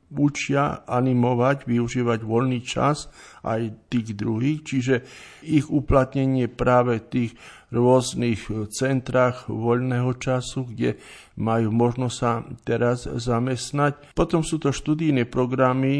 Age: 50-69